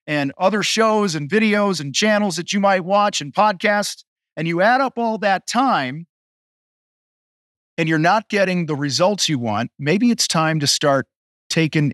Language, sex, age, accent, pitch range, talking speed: English, male, 40-59, American, 150-195 Hz, 170 wpm